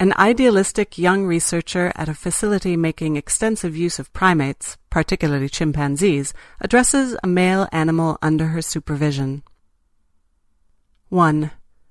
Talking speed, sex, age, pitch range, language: 110 wpm, female, 40-59, 145-180 Hz, English